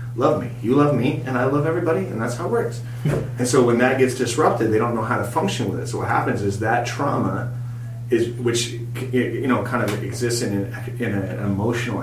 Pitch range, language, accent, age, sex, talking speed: 115-125 Hz, English, American, 30-49, male, 225 wpm